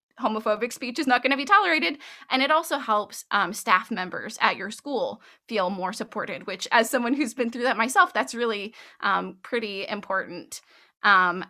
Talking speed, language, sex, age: 185 wpm, English, female, 20-39